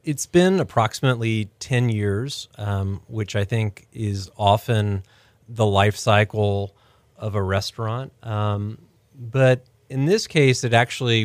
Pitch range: 100-115 Hz